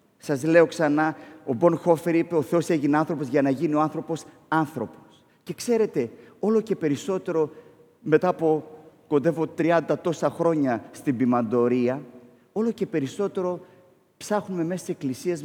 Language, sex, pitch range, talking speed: Greek, male, 130-170 Hz, 145 wpm